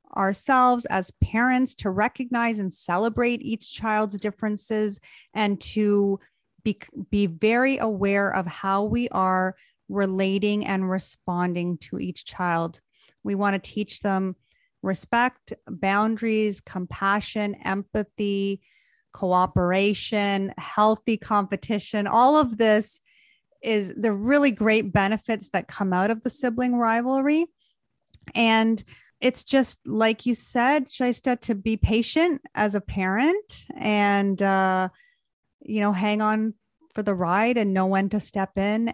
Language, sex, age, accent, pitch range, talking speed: English, female, 30-49, American, 195-235 Hz, 125 wpm